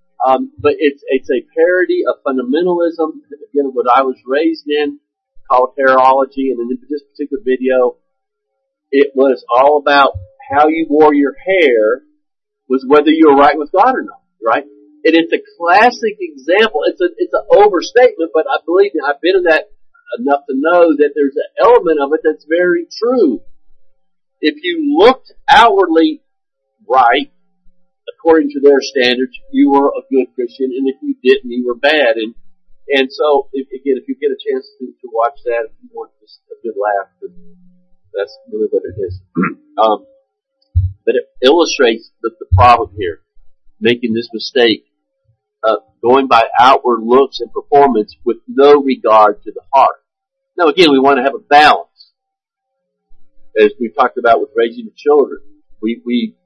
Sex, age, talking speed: male, 50-69, 170 wpm